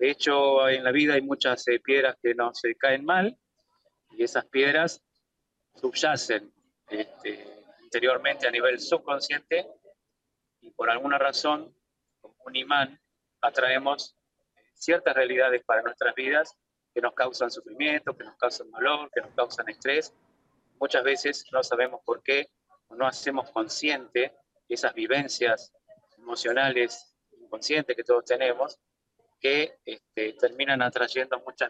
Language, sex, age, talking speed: Spanish, male, 30-49, 135 wpm